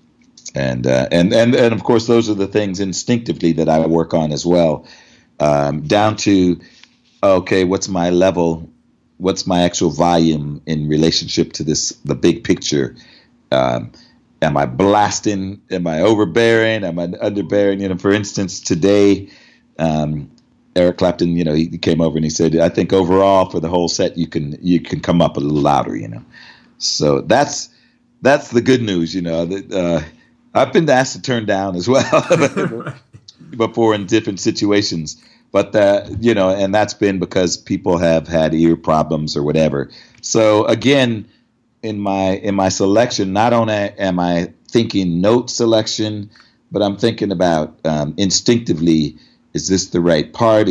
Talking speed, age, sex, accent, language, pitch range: 170 wpm, 40-59, male, American, English, 85-105 Hz